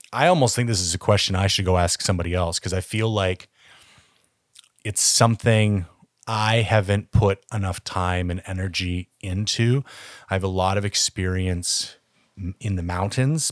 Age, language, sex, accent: 30-49, English, male, American